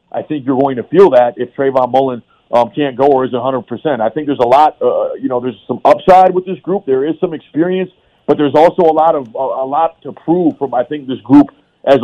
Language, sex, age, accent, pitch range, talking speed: English, male, 40-59, American, 130-155 Hz, 255 wpm